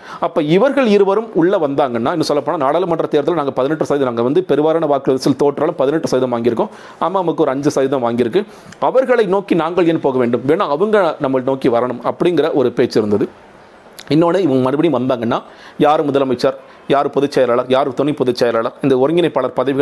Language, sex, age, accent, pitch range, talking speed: Tamil, male, 40-59, native, 130-160 Hz, 95 wpm